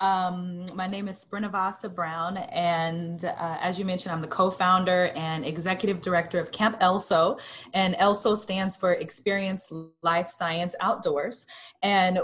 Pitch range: 170-215 Hz